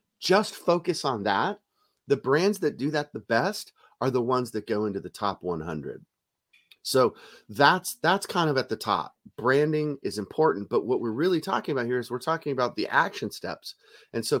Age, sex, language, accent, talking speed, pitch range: 30-49, male, English, American, 195 wpm, 115-170 Hz